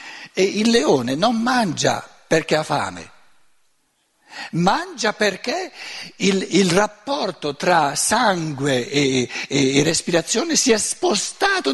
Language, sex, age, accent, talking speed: Italian, male, 60-79, native, 105 wpm